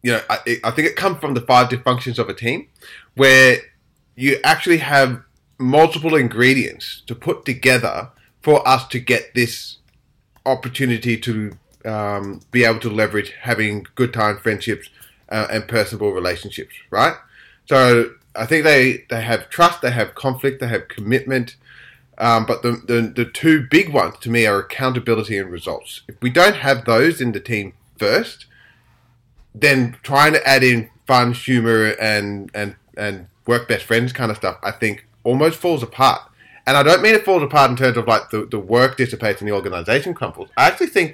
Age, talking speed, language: 20-39, 180 wpm, English